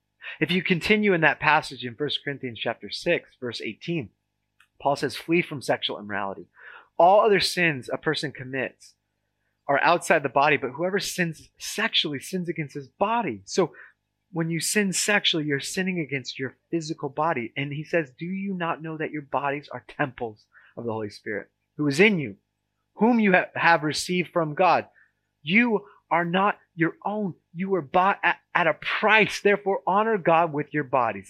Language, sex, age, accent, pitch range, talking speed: English, male, 30-49, American, 105-165 Hz, 175 wpm